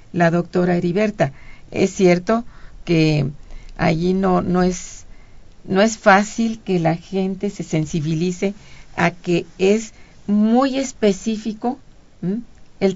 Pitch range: 175-205 Hz